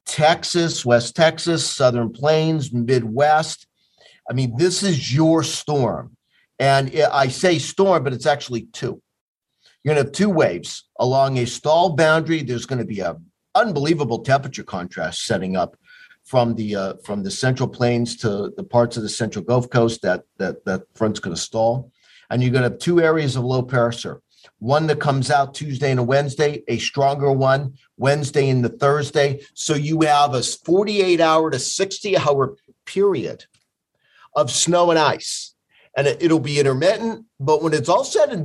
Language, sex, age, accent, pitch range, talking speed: English, male, 50-69, American, 125-160 Hz, 165 wpm